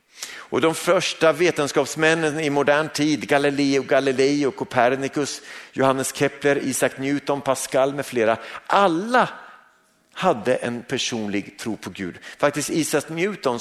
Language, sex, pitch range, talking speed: Swedish, male, 130-195 Hz, 115 wpm